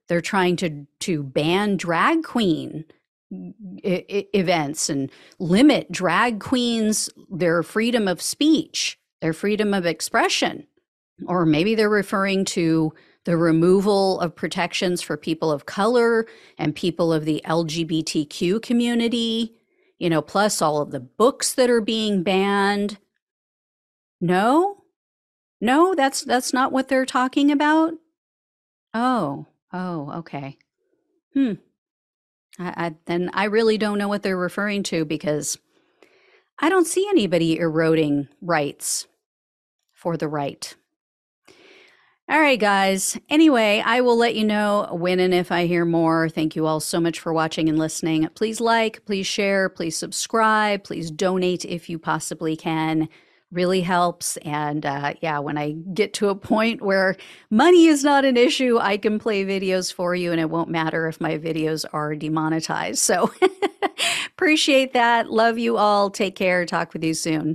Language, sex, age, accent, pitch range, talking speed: English, female, 40-59, American, 165-230 Hz, 145 wpm